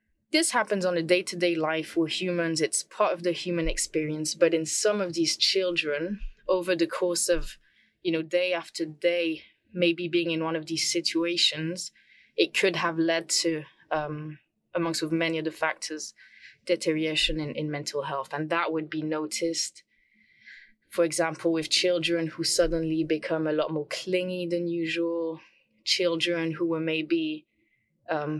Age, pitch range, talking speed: 20-39, 160-180 Hz, 165 wpm